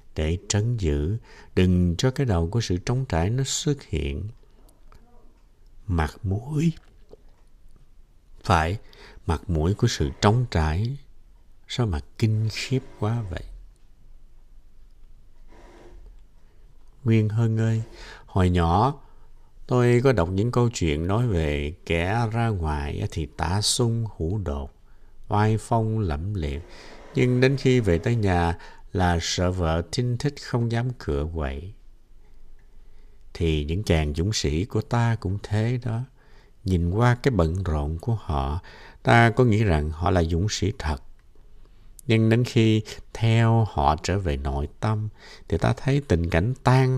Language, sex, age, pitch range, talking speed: Vietnamese, male, 60-79, 85-115 Hz, 140 wpm